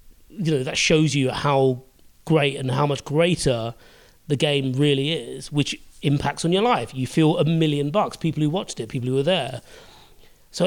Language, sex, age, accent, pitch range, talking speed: English, male, 30-49, British, 130-155 Hz, 190 wpm